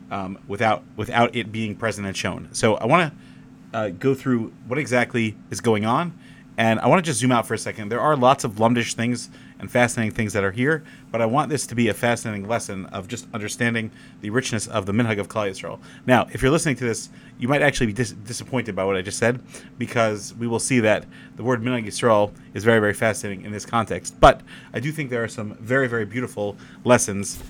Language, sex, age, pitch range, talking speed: English, male, 30-49, 105-125 Hz, 225 wpm